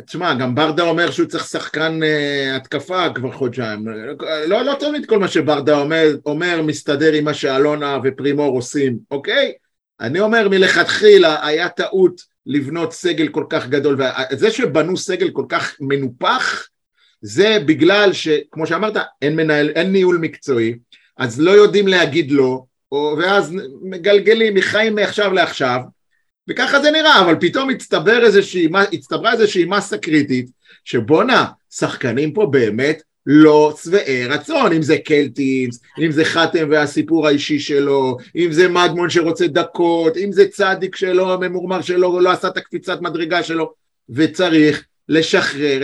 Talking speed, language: 140 wpm, Hebrew